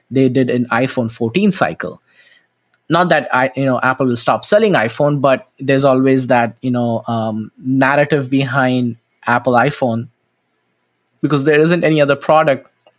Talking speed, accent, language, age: 150 wpm, Indian, English, 20-39